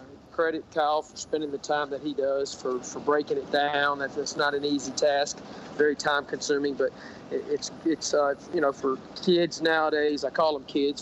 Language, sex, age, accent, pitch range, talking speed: English, male, 40-59, American, 145-165 Hz, 190 wpm